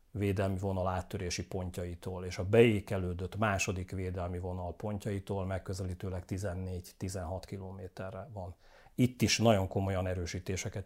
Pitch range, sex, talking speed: 95-115 Hz, male, 110 wpm